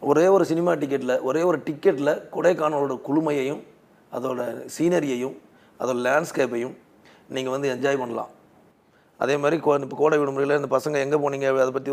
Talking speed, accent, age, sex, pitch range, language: 135 wpm, native, 30-49, male, 125-150 Hz, Tamil